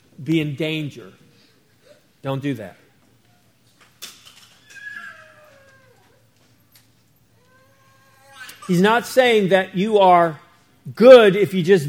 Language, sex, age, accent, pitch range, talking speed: English, male, 50-69, American, 160-210 Hz, 80 wpm